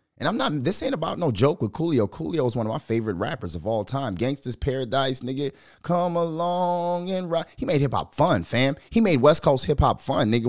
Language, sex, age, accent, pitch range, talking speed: English, male, 30-49, American, 110-150 Hz, 225 wpm